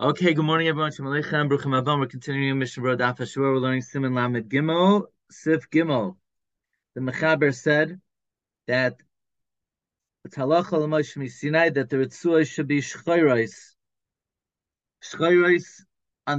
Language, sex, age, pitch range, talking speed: English, male, 30-49, 130-160 Hz, 100 wpm